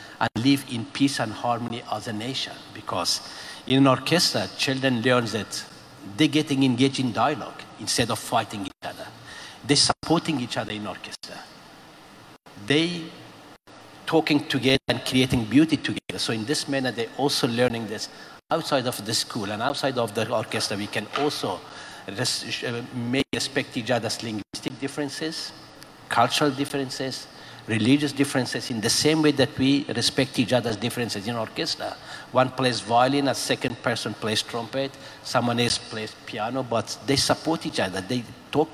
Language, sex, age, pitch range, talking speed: Slovak, male, 60-79, 115-140 Hz, 155 wpm